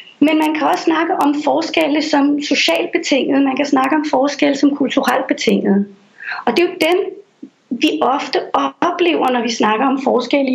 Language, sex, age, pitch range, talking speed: Danish, female, 30-49, 255-330 Hz, 175 wpm